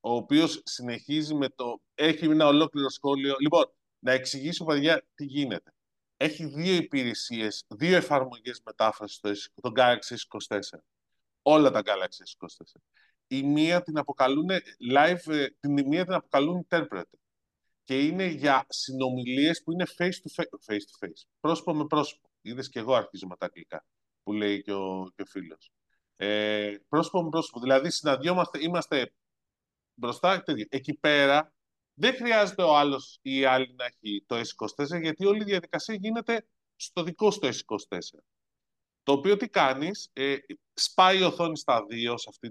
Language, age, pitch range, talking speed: Greek, 30-49, 125-165 Hz, 150 wpm